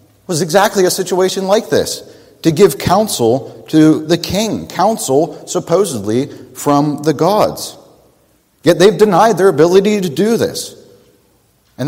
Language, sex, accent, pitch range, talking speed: English, male, American, 125-190 Hz, 130 wpm